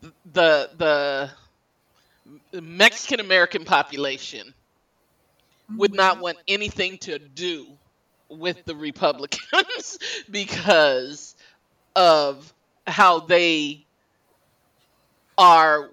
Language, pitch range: English, 155-220 Hz